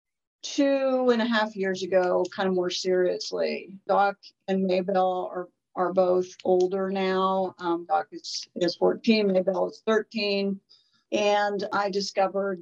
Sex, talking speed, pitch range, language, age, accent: female, 140 wpm, 180-205 Hz, English, 50-69, American